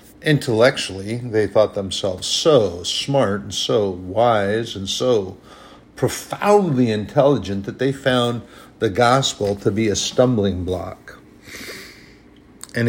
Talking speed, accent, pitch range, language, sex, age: 110 wpm, American, 95-125 Hz, English, male, 50-69